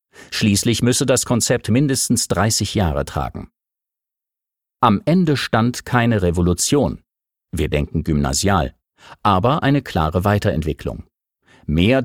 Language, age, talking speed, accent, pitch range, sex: German, 50-69, 105 wpm, German, 90-125 Hz, male